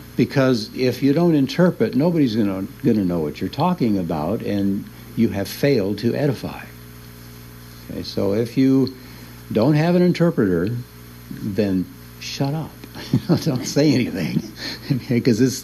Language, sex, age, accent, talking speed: English, male, 60-79, American, 135 wpm